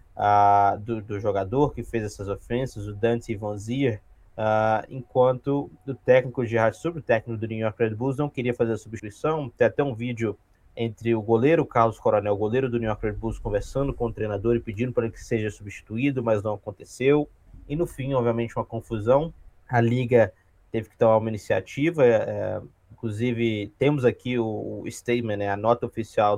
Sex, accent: male, Brazilian